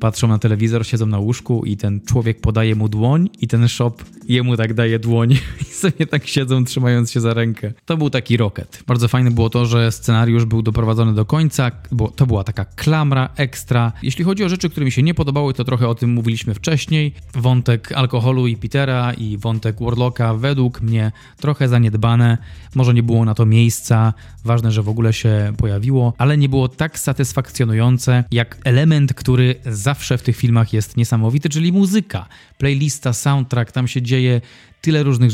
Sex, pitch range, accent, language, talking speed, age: male, 115-130 Hz, native, Polish, 185 wpm, 20-39